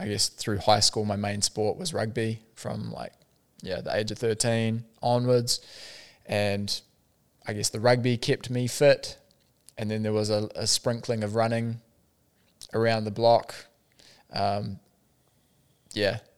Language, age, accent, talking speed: English, 20-39, Australian, 145 wpm